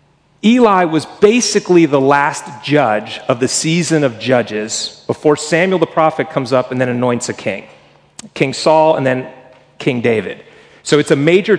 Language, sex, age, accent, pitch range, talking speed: English, male, 40-59, American, 125-165 Hz, 165 wpm